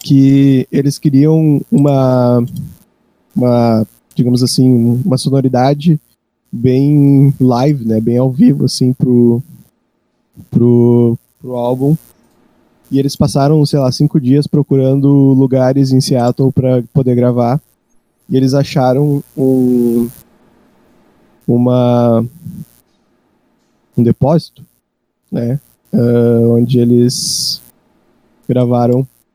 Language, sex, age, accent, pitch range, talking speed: Portuguese, male, 20-39, Brazilian, 120-145 Hz, 95 wpm